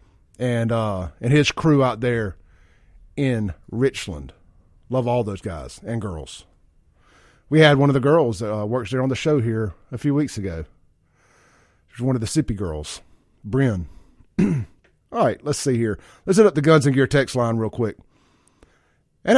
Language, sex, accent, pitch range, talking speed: English, male, American, 110-155 Hz, 175 wpm